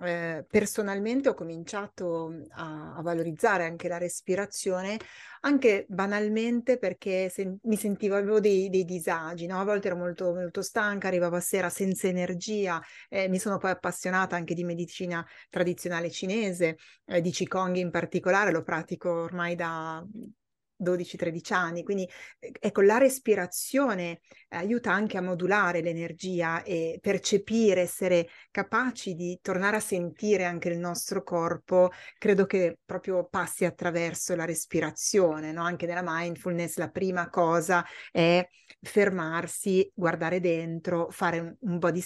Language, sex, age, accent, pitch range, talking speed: Italian, female, 30-49, native, 170-195 Hz, 135 wpm